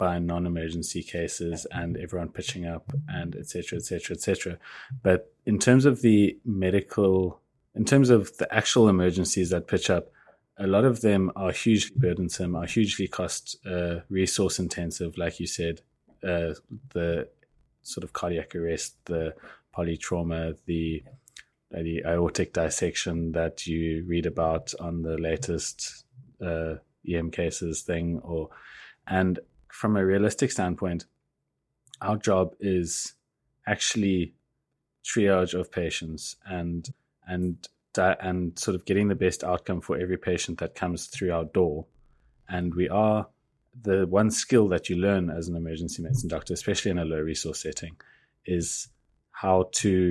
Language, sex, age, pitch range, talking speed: English, male, 20-39, 85-100 Hz, 145 wpm